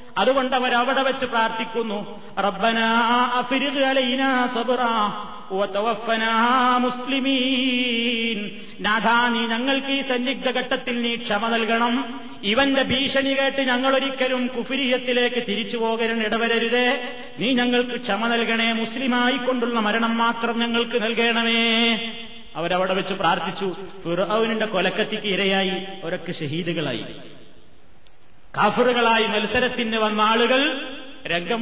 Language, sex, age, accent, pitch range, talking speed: Malayalam, male, 30-49, native, 210-260 Hz, 75 wpm